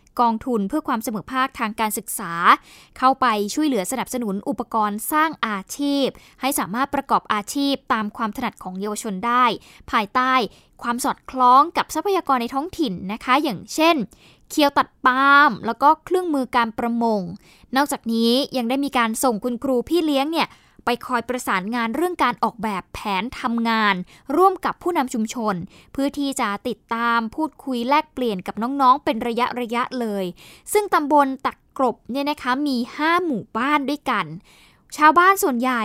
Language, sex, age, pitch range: Thai, female, 20-39, 225-285 Hz